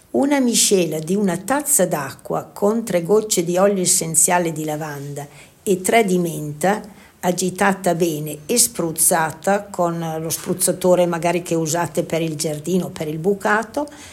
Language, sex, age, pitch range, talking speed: Italian, female, 50-69, 165-200 Hz, 150 wpm